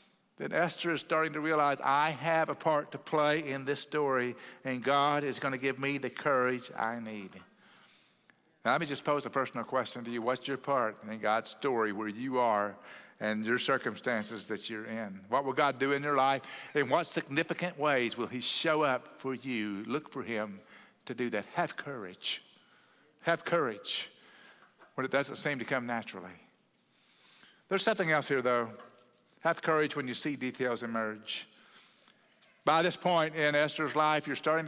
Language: English